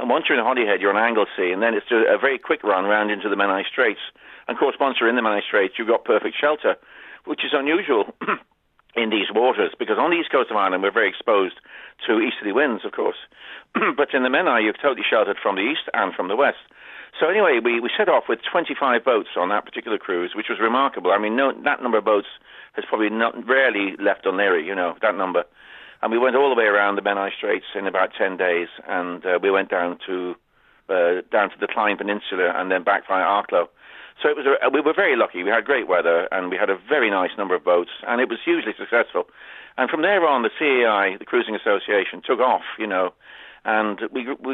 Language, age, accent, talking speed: English, 50-69, British, 235 wpm